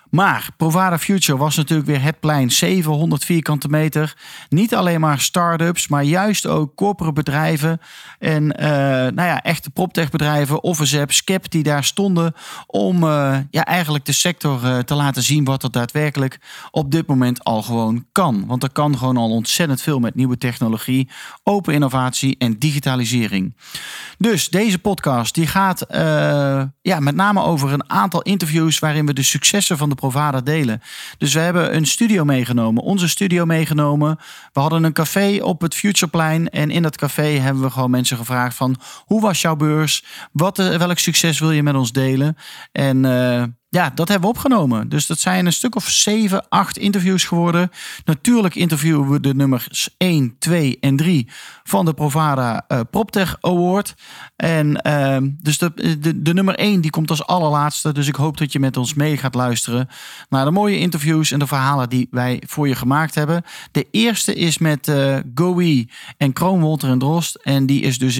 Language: Dutch